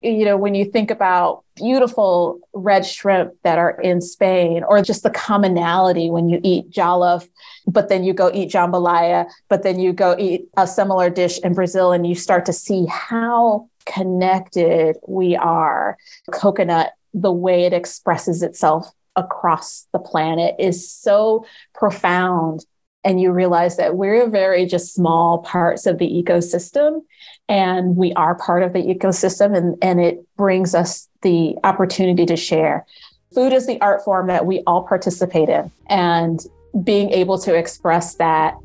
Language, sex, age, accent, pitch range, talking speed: English, female, 30-49, American, 170-200 Hz, 160 wpm